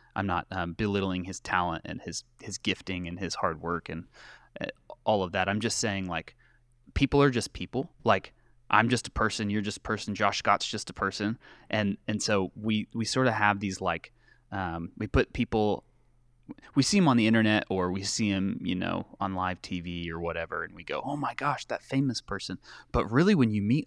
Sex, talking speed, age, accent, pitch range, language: male, 215 wpm, 20-39, American, 95-120 Hz, English